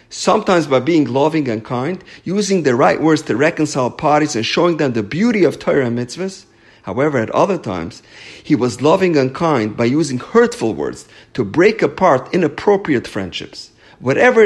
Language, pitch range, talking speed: English, 110-165 Hz, 170 wpm